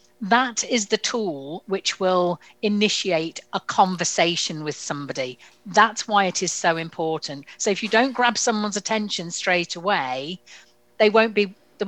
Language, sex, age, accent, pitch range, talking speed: English, female, 50-69, British, 170-215 Hz, 150 wpm